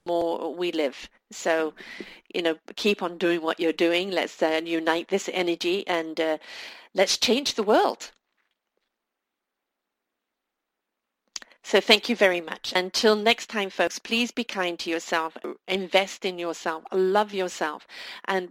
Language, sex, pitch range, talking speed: English, female, 165-210 Hz, 140 wpm